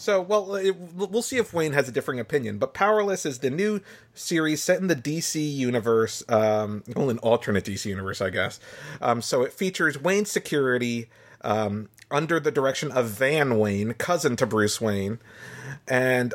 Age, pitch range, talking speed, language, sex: 30-49, 110-165 Hz, 175 wpm, English, male